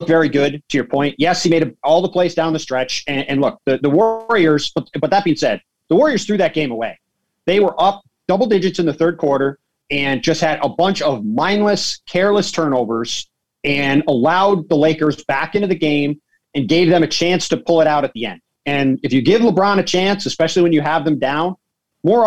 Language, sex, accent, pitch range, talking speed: English, male, American, 145-190 Hz, 225 wpm